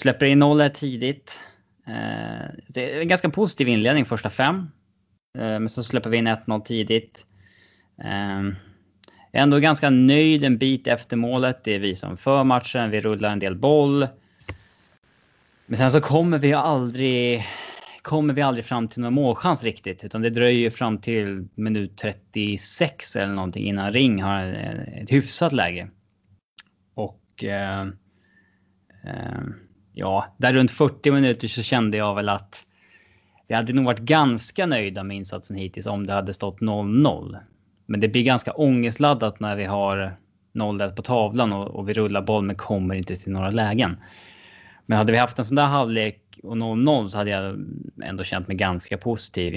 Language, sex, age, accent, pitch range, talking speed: English, male, 20-39, Norwegian, 100-125 Hz, 160 wpm